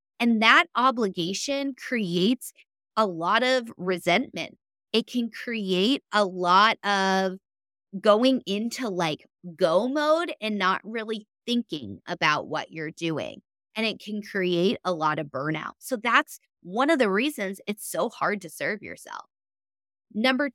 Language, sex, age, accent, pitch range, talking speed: English, female, 20-39, American, 180-250 Hz, 140 wpm